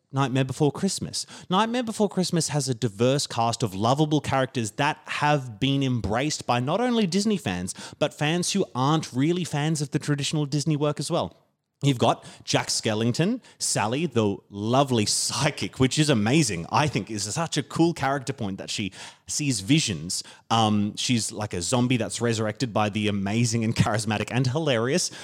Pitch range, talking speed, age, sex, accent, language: 115-145 Hz, 170 wpm, 30-49, male, Australian, English